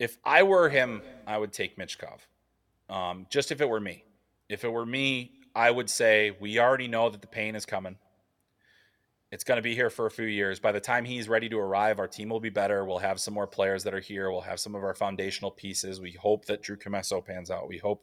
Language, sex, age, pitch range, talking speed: English, male, 30-49, 100-120 Hz, 245 wpm